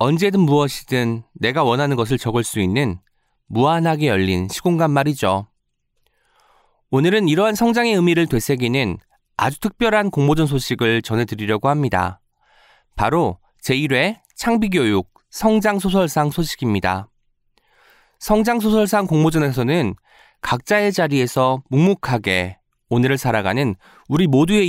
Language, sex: Korean, male